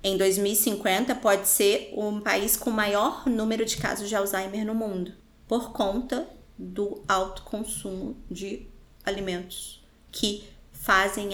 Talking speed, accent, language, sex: 130 wpm, Brazilian, Portuguese, female